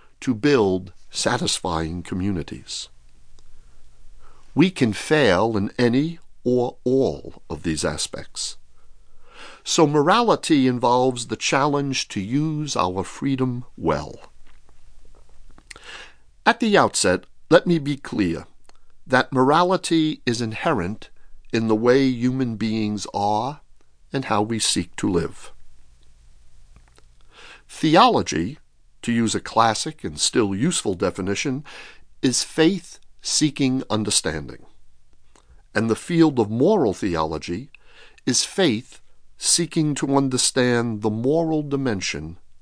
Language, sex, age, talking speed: English, male, 50-69, 105 wpm